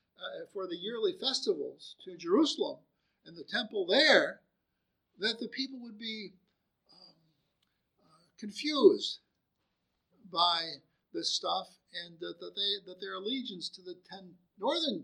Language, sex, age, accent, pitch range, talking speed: English, male, 60-79, American, 175-275 Hz, 130 wpm